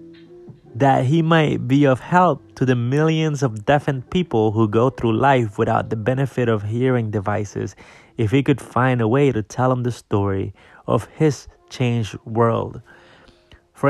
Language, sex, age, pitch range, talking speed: English, male, 30-49, 115-150 Hz, 165 wpm